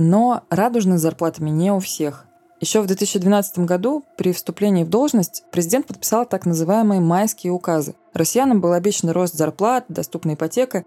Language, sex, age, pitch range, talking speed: Russian, female, 20-39, 165-210 Hz, 150 wpm